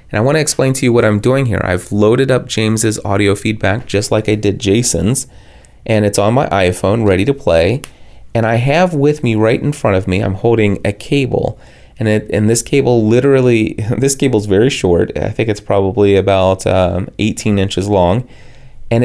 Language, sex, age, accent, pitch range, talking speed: English, male, 30-49, American, 100-125 Hz, 200 wpm